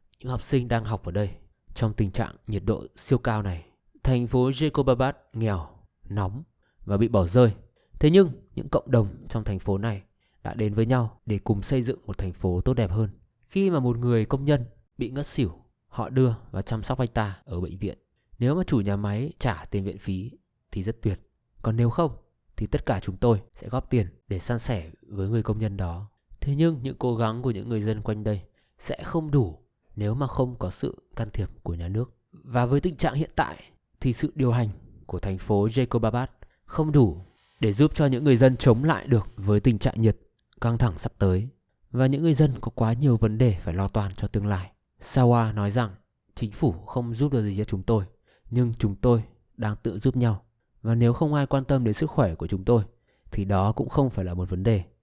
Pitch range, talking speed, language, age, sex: 100-130 Hz, 230 wpm, Vietnamese, 20-39, male